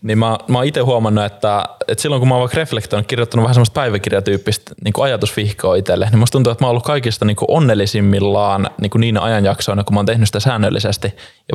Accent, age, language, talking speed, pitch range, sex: native, 20-39, Finnish, 215 wpm, 105-120 Hz, male